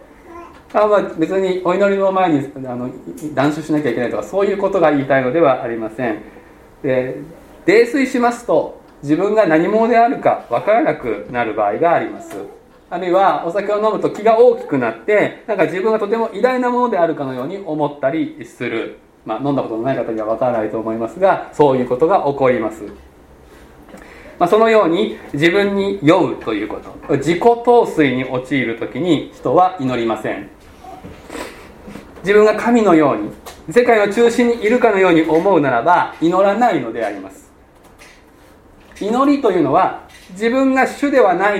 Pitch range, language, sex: 160-240 Hz, Japanese, male